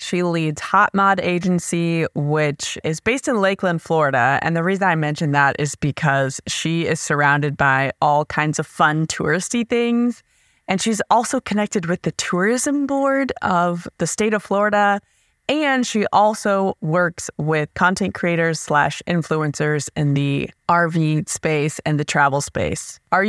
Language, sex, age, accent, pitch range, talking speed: English, female, 20-39, American, 155-215 Hz, 155 wpm